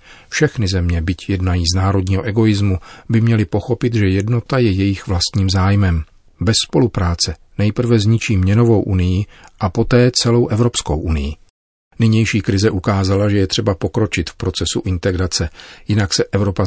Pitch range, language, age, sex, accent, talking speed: 95-110 Hz, Czech, 40-59, male, native, 145 wpm